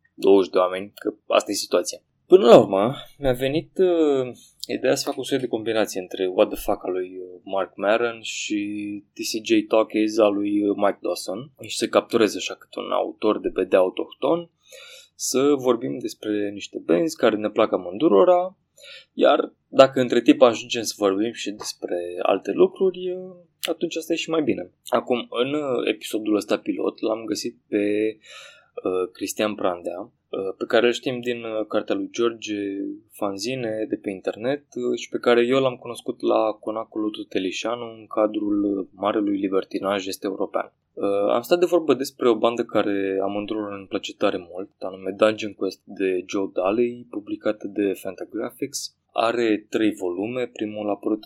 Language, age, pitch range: English, 20-39, 100-150 Hz